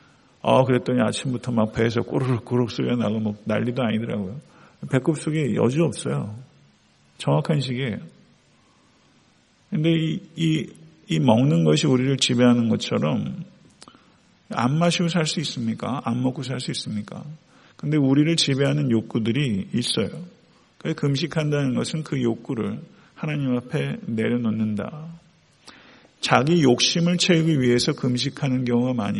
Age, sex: 50-69, male